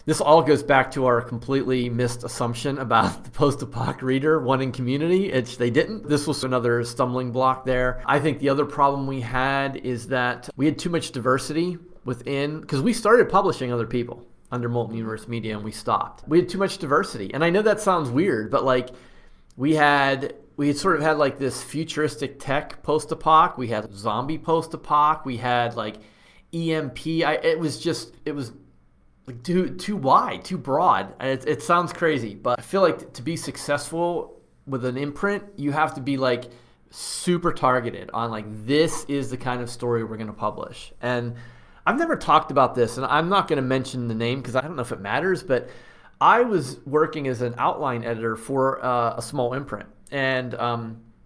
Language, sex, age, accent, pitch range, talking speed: English, male, 40-59, American, 120-155 Hz, 190 wpm